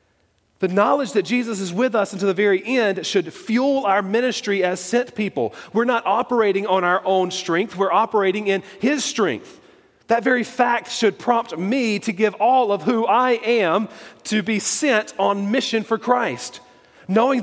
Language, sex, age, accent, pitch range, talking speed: English, male, 40-59, American, 155-220 Hz, 175 wpm